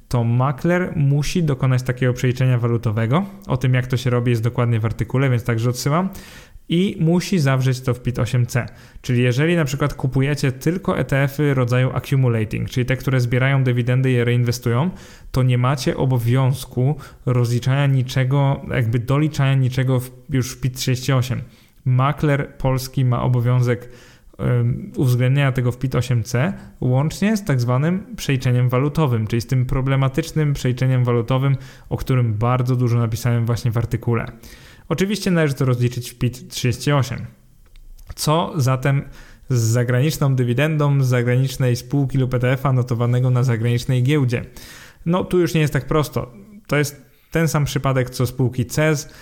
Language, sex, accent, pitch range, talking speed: Polish, male, native, 125-140 Hz, 150 wpm